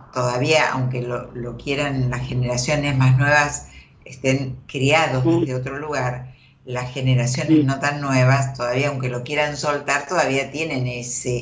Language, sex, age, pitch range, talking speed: Spanish, female, 50-69, 125-145 Hz, 140 wpm